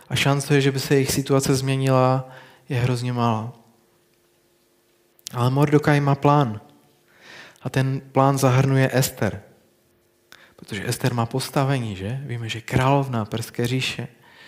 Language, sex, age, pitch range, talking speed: Czech, male, 20-39, 120-145 Hz, 125 wpm